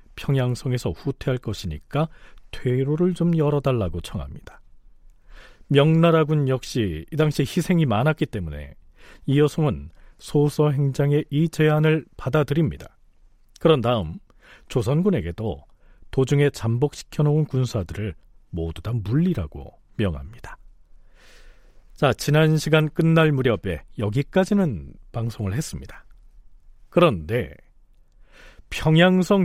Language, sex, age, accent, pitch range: Korean, male, 40-59, native, 105-160 Hz